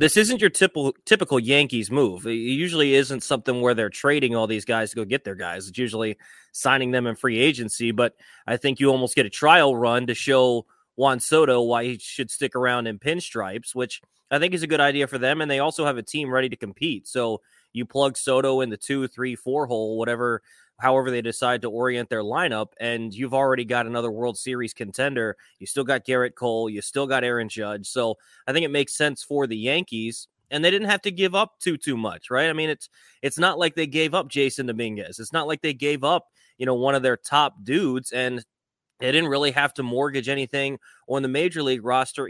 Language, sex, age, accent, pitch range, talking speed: English, male, 20-39, American, 120-145 Hz, 225 wpm